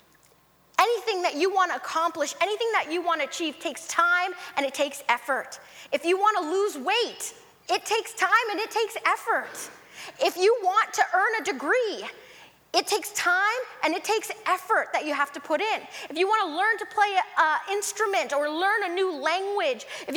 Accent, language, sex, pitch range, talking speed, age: American, English, female, 235-370 Hz, 195 wpm, 20-39